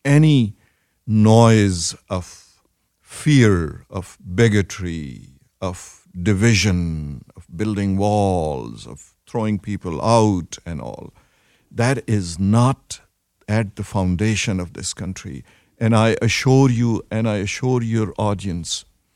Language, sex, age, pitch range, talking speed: English, male, 50-69, 95-120 Hz, 110 wpm